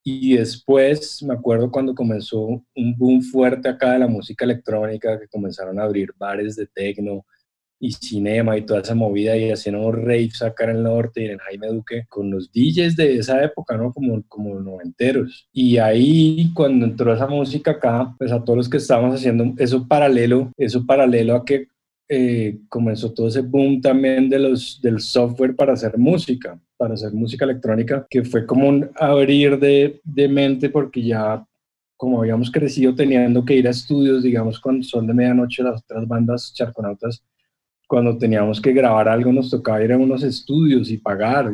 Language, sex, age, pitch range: Spanish, male, 20-39, 115-130 Hz